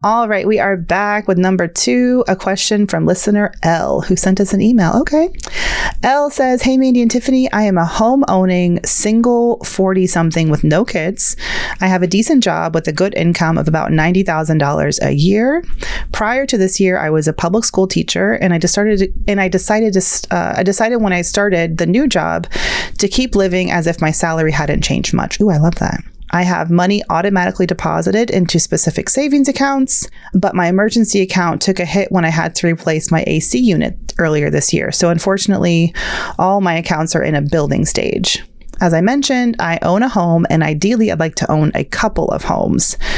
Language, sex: English, female